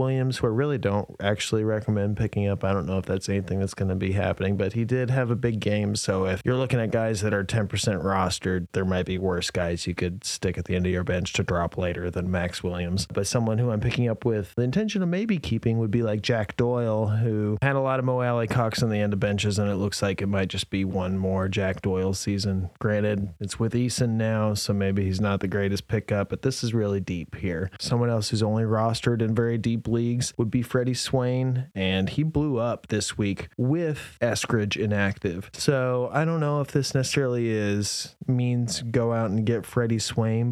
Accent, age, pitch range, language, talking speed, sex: American, 30-49, 95-120 Hz, English, 230 wpm, male